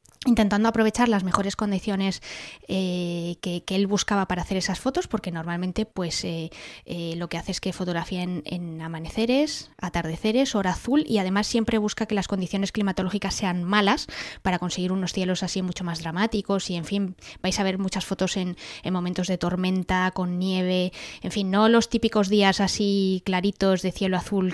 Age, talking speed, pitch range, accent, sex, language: 20-39, 185 wpm, 180-200 Hz, Spanish, female, English